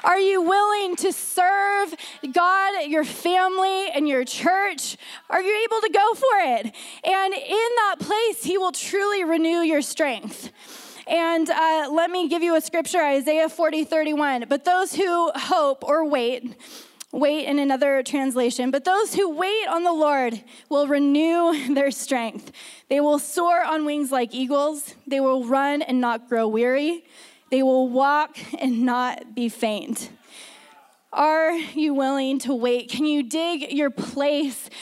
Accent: American